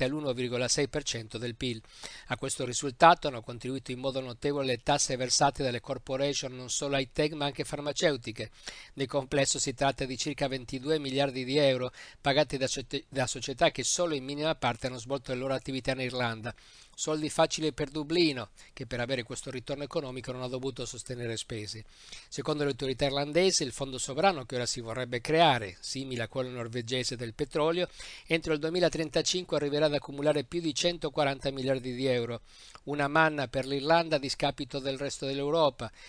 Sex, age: male, 50-69